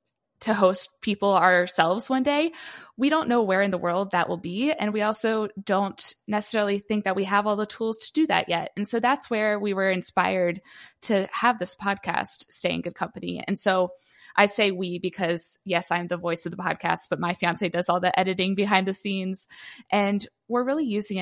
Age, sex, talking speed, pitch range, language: 20-39, female, 210 wpm, 185-215 Hz, English